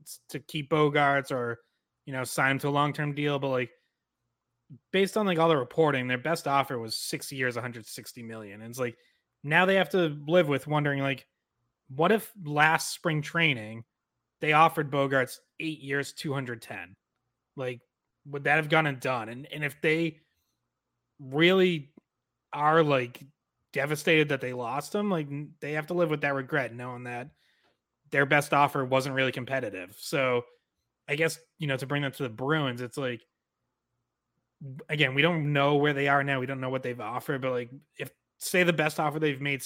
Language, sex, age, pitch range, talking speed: English, male, 30-49, 130-155 Hz, 185 wpm